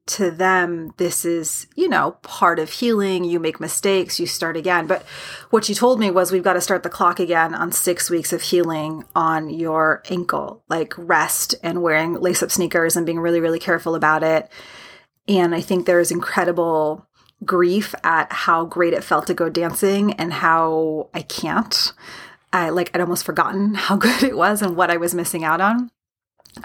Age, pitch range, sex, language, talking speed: 30-49, 170-200 Hz, female, English, 190 wpm